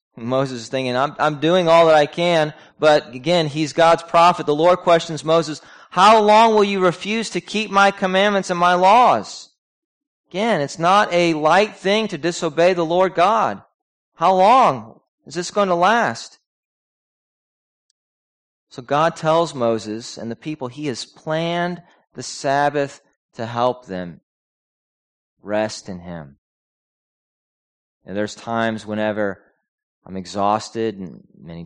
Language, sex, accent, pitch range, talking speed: English, male, American, 105-175 Hz, 140 wpm